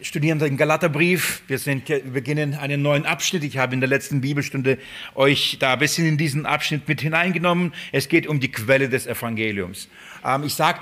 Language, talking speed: German, 190 wpm